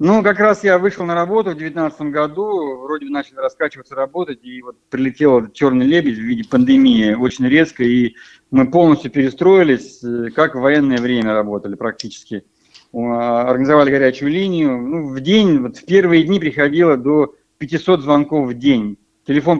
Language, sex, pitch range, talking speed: Russian, male, 125-160 Hz, 155 wpm